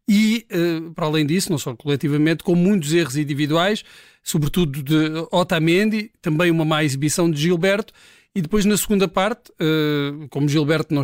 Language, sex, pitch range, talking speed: Portuguese, male, 155-190 Hz, 150 wpm